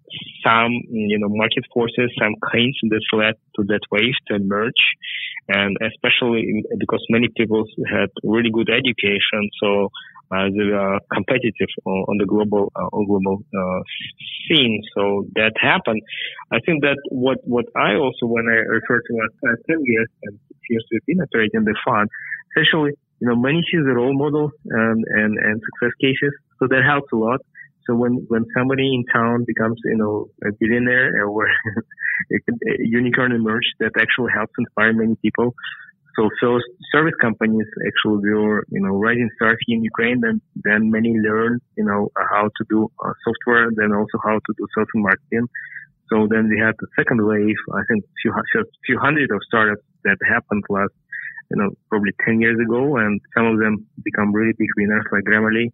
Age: 20-39